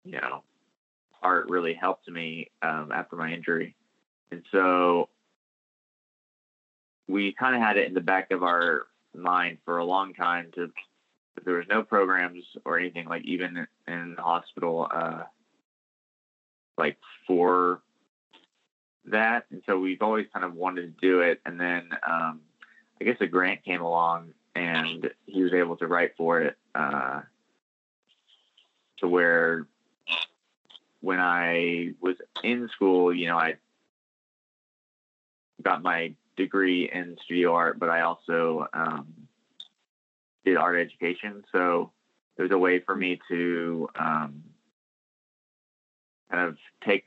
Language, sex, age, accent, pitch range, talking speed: English, male, 20-39, American, 85-90 Hz, 135 wpm